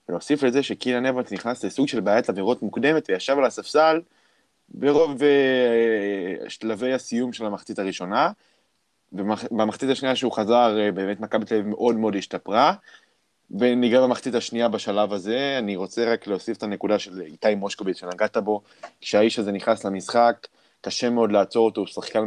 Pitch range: 105-130 Hz